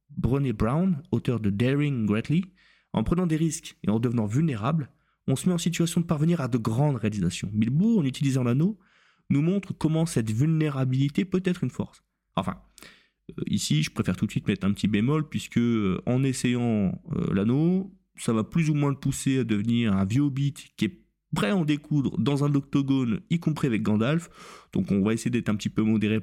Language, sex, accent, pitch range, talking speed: French, male, French, 110-160 Hz, 200 wpm